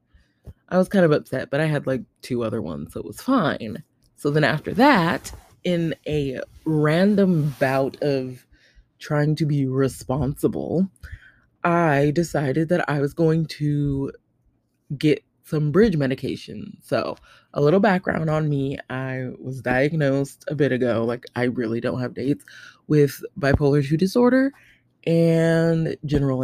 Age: 20-39